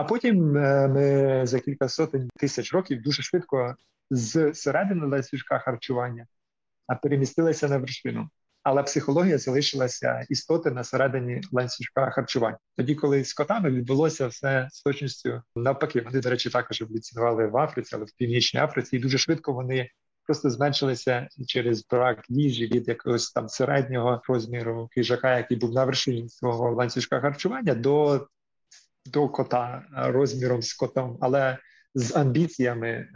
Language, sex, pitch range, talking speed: Ukrainian, male, 120-140 Hz, 140 wpm